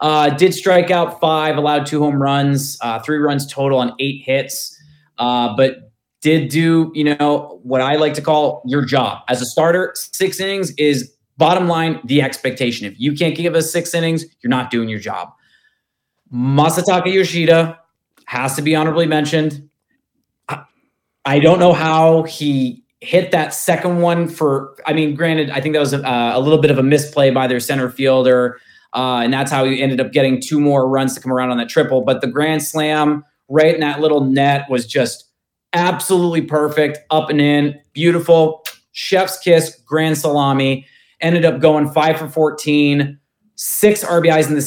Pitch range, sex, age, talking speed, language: 135-165 Hz, male, 20-39, 180 wpm, English